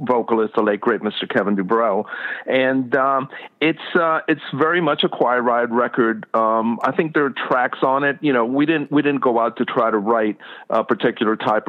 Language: English